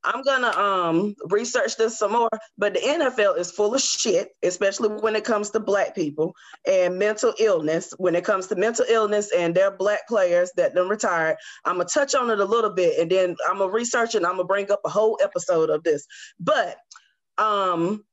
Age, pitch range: 20-39, 180-235 Hz